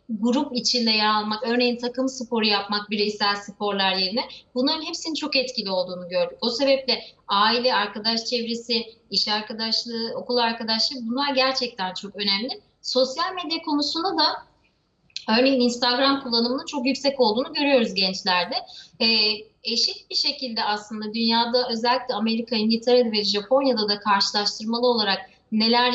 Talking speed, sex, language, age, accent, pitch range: 130 wpm, female, Turkish, 30-49, native, 210-255 Hz